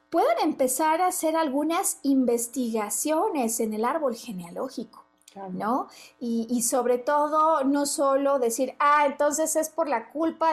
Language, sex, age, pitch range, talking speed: Spanish, female, 40-59, 245-315 Hz, 135 wpm